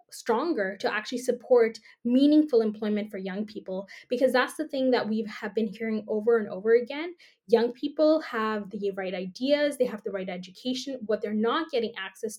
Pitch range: 215-255 Hz